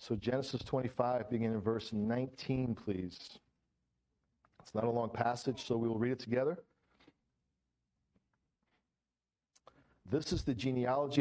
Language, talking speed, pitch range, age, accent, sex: English, 125 wpm, 115-140 Hz, 50-69, American, male